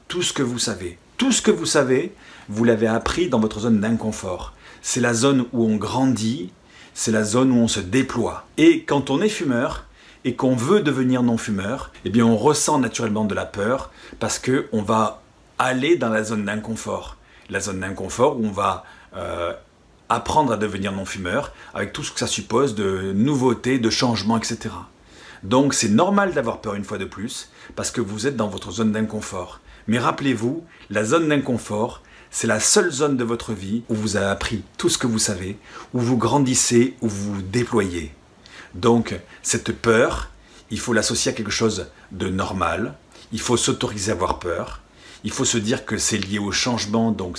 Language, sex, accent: French, male, French